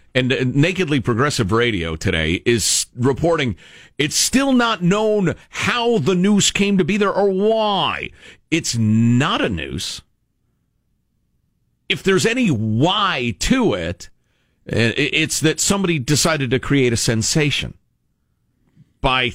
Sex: male